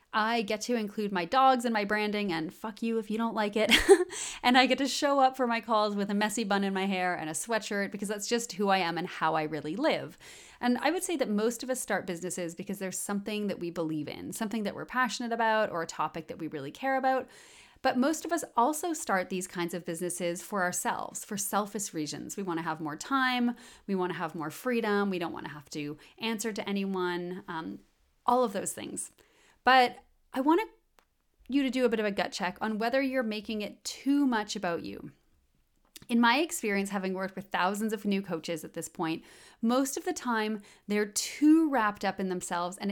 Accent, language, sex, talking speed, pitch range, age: American, English, female, 230 wpm, 180-245 Hz, 30-49